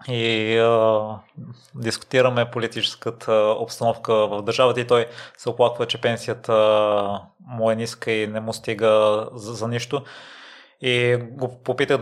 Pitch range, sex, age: 110-120 Hz, male, 20-39